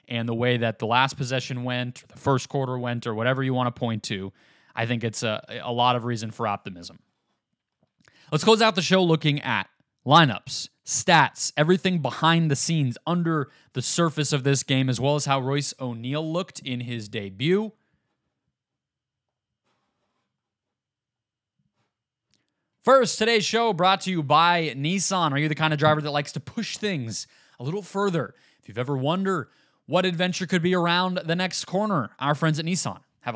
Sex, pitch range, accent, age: male, 130-180 Hz, American, 20-39